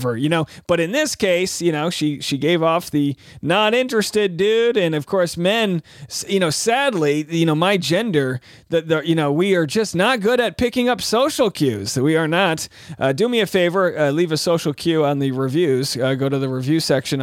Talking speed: 215 wpm